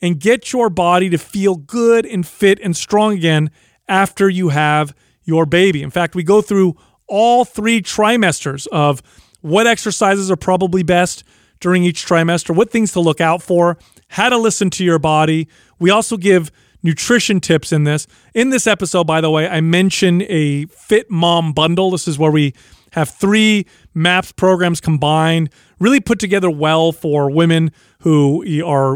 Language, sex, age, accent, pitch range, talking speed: English, male, 30-49, American, 160-200 Hz, 170 wpm